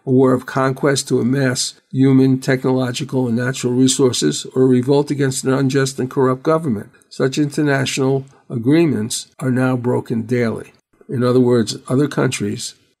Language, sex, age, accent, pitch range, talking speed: English, male, 50-69, American, 125-140 Hz, 150 wpm